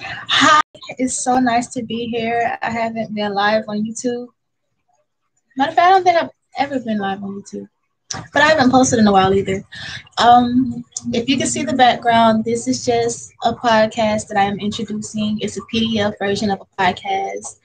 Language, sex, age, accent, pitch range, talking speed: English, female, 20-39, American, 205-240 Hz, 190 wpm